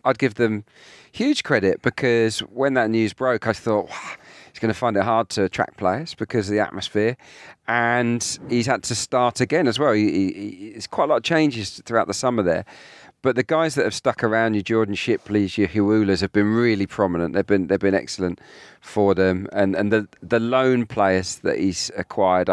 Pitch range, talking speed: 95-120 Hz, 210 wpm